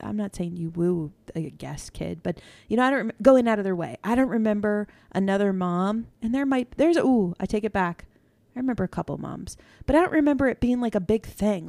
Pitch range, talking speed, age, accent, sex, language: 180-230 Hz, 240 wpm, 20-39, American, female, English